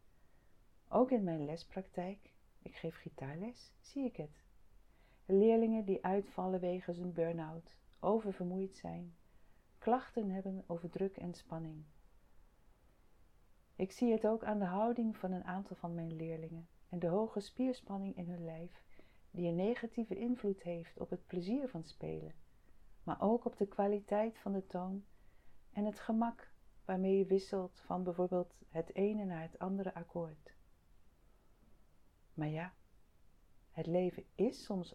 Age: 40-59